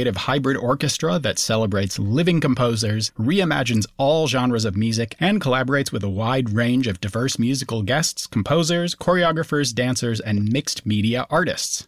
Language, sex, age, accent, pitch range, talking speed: English, male, 30-49, American, 105-140 Hz, 140 wpm